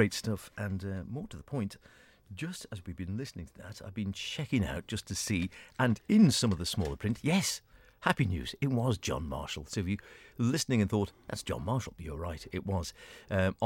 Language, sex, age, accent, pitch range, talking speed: English, male, 50-69, British, 85-105 Hz, 220 wpm